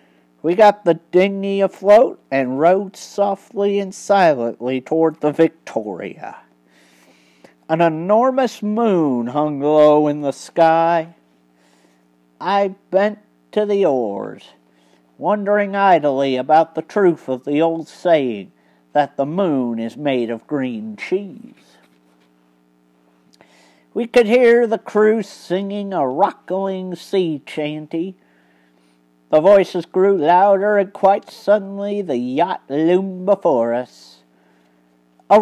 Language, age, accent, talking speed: English, 50-69, American, 110 wpm